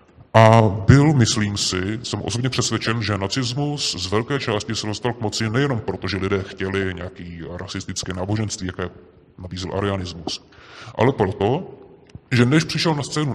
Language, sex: Czech, female